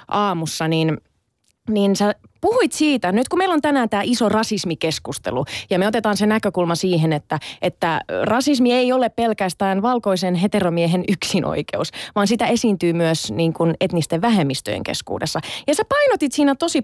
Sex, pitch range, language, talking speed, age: female, 180-260 Hz, Finnish, 155 wpm, 20-39